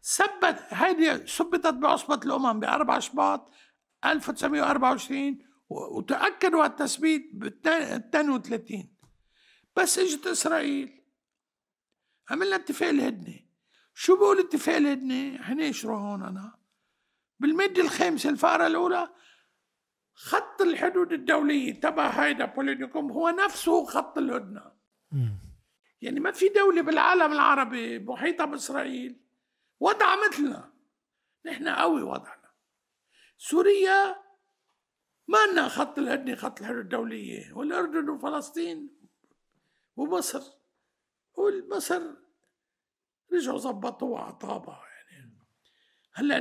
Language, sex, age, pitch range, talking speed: Arabic, male, 60-79, 270-360 Hz, 90 wpm